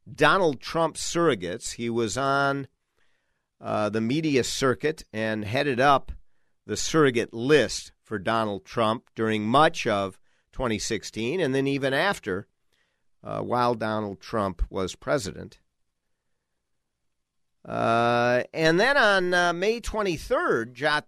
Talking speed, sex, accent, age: 115 wpm, male, American, 50-69